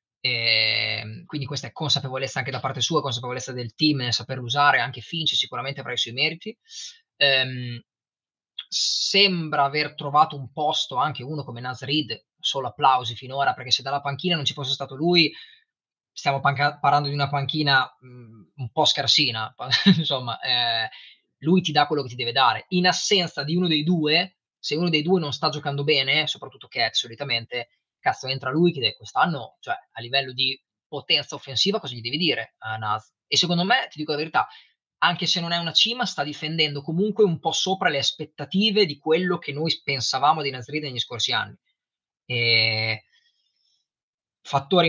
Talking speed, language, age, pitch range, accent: 175 wpm, Italian, 20-39, 130-165 Hz, native